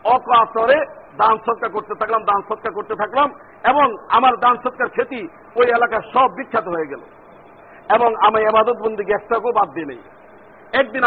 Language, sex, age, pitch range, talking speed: Bengali, male, 50-69, 215-255 Hz, 100 wpm